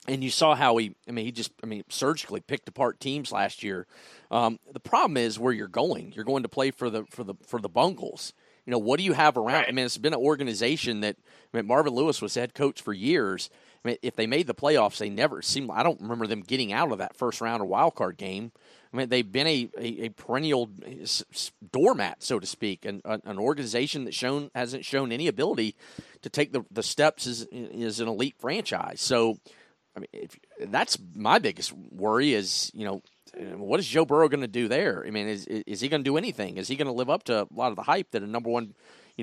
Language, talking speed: English, 245 wpm